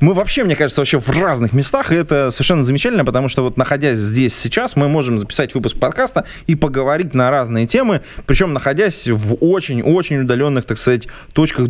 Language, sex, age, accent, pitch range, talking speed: Russian, male, 20-39, native, 115-145 Hz, 185 wpm